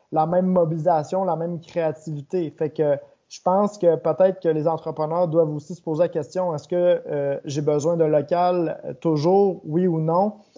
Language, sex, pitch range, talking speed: French, male, 150-185 Hz, 180 wpm